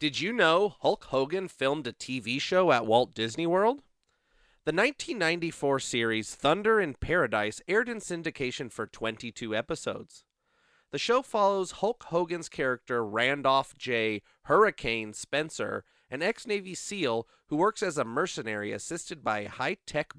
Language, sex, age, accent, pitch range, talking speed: English, male, 30-49, American, 120-175 Hz, 140 wpm